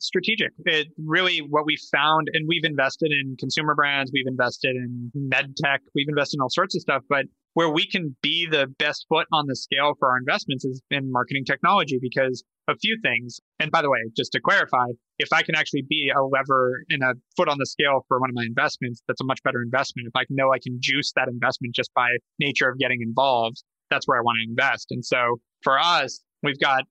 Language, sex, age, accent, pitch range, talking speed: English, male, 20-39, American, 125-155 Hz, 230 wpm